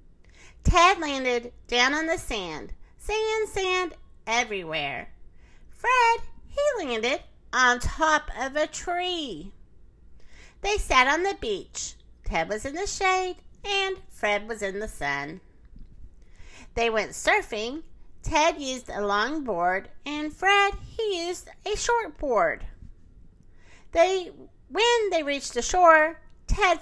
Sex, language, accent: female, English, American